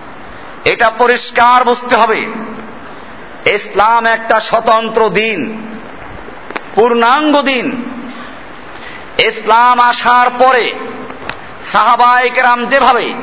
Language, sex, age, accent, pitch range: Bengali, male, 50-69, native, 235-275 Hz